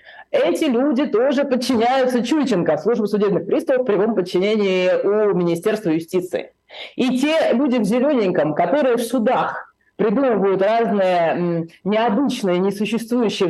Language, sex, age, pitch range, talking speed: Russian, female, 30-49, 180-250 Hz, 115 wpm